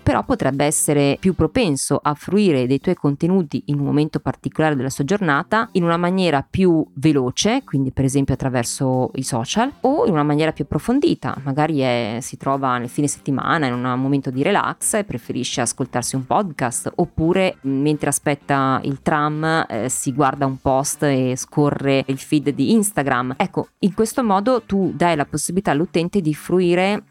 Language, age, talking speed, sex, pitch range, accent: Italian, 20-39, 170 wpm, female, 135-195 Hz, native